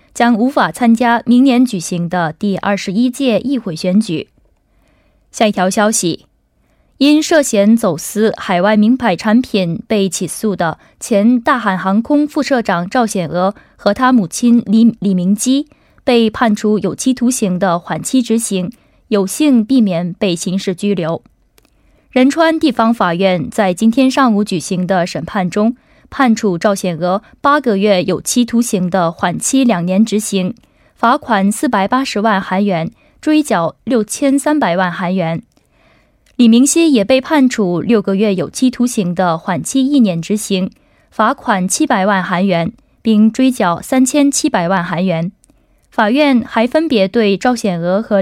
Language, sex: Korean, female